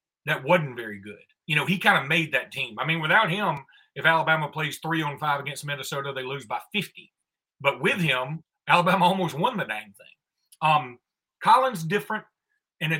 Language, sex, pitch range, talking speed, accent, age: English, male, 145-185 Hz, 195 wpm, American, 40-59